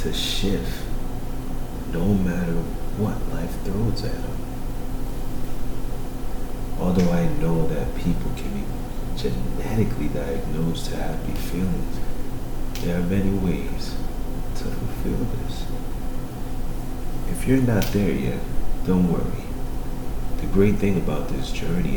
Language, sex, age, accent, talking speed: English, male, 30-49, American, 110 wpm